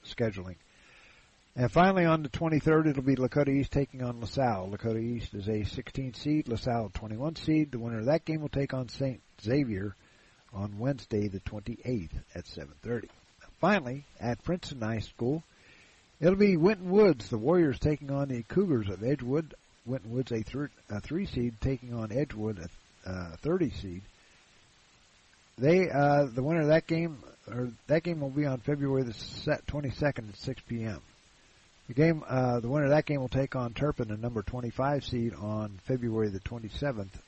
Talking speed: 175 wpm